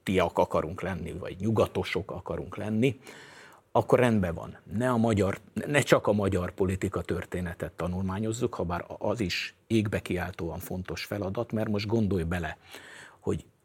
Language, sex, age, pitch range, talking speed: Hungarian, male, 60-79, 95-120 Hz, 140 wpm